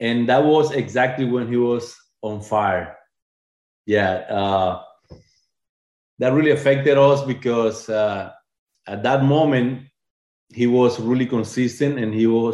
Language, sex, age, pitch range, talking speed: English, male, 30-49, 105-120 Hz, 130 wpm